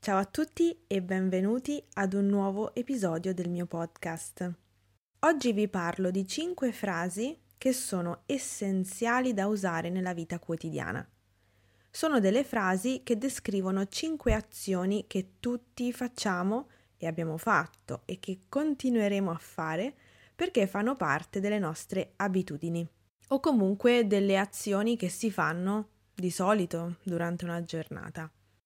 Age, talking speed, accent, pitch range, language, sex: 20-39, 130 wpm, native, 170-235 Hz, Italian, female